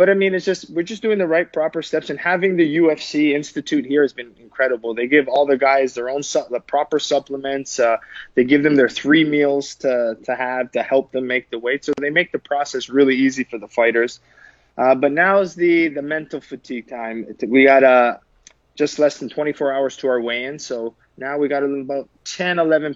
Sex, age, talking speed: male, 20-39, 225 wpm